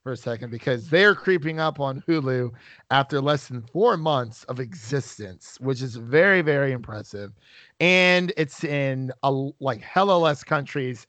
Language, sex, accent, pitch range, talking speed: English, male, American, 125-160 Hz, 155 wpm